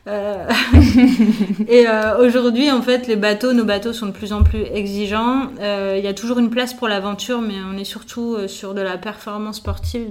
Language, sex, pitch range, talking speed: French, female, 195-230 Hz, 180 wpm